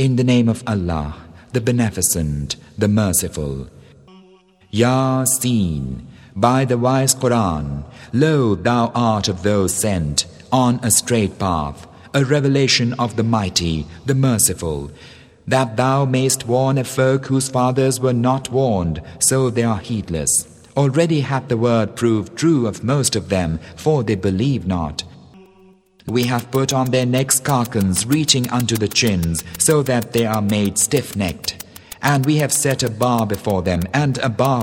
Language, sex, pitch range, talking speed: English, male, 95-130 Hz, 155 wpm